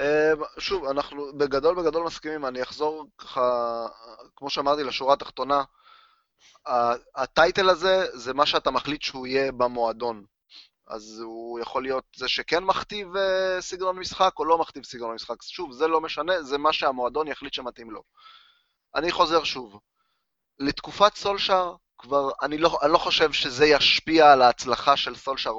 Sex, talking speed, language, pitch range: male, 145 wpm, Hebrew, 120-165 Hz